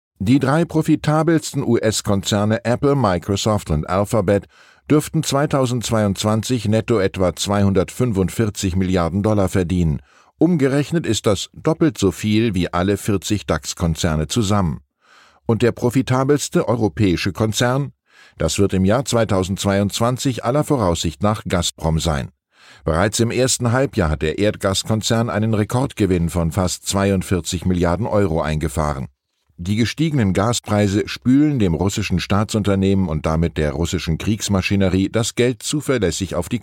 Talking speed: 120 wpm